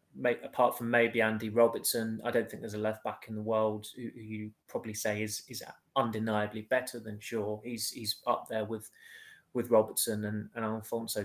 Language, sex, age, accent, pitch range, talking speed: English, male, 20-39, British, 105-110 Hz, 180 wpm